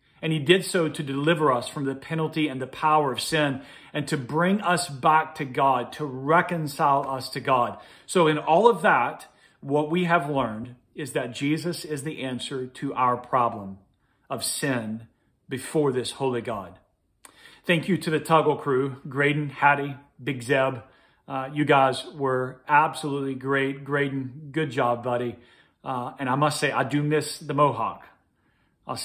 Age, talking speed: 40-59, 170 wpm